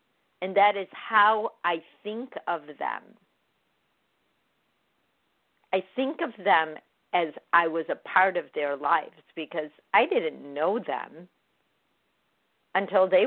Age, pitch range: 50-69, 160-195 Hz